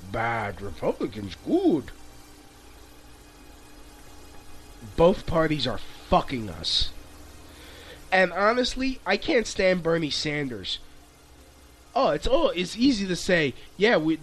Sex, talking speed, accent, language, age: male, 95 wpm, American, English, 30-49